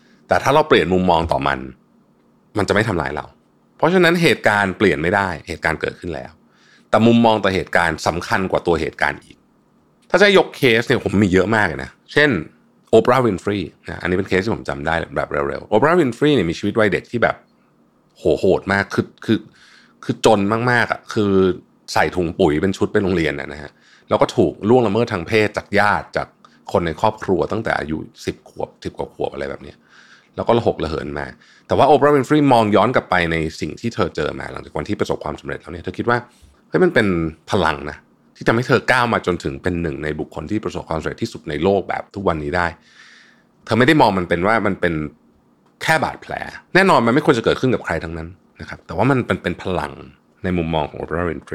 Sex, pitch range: male, 80-115 Hz